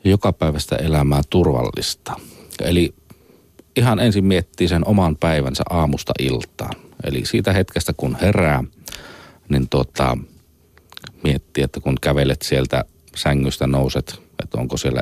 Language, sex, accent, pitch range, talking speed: Finnish, male, native, 65-80 Hz, 120 wpm